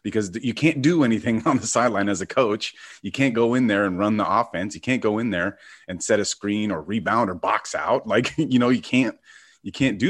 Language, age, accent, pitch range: English, 30-49, American, 95-120 Hz